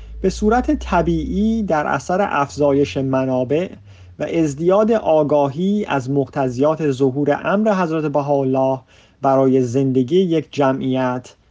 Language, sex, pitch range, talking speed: Persian, male, 130-180 Hz, 105 wpm